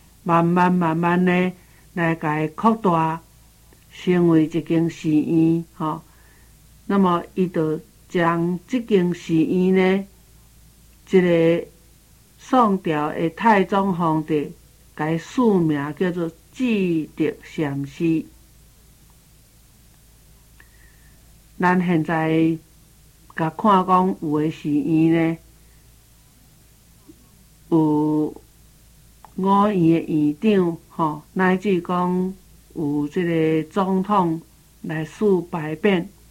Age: 60-79